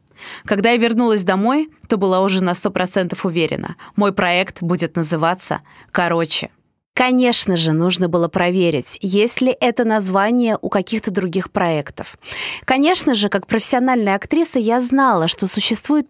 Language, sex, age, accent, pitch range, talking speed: Russian, female, 20-39, native, 185-245 Hz, 140 wpm